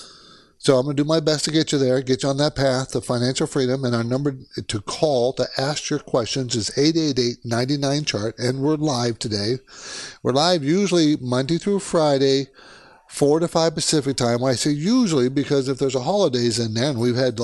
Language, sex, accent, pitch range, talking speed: English, male, American, 125-160 Hz, 205 wpm